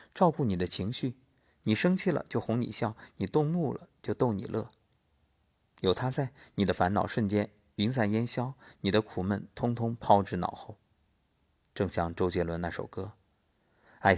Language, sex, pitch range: Chinese, male, 90-115 Hz